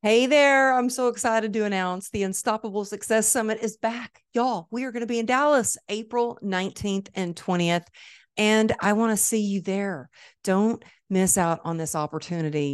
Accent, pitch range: American, 165-210 Hz